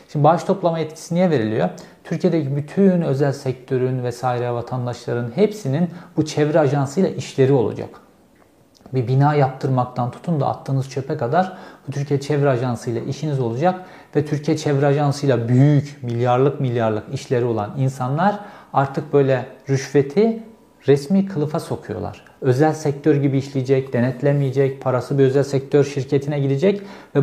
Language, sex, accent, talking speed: Turkish, male, native, 135 wpm